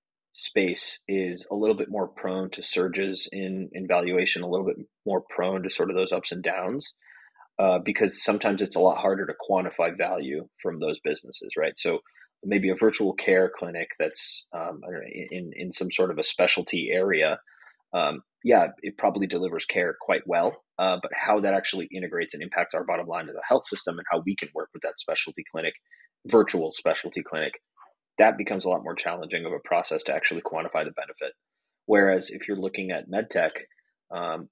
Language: English